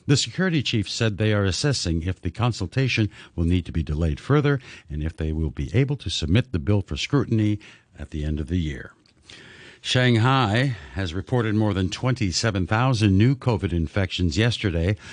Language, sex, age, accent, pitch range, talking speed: English, male, 60-79, American, 85-120 Hz, 175 wpm